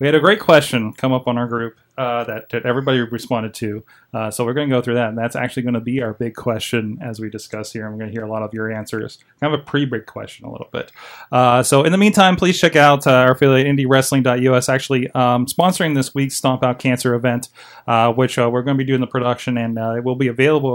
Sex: male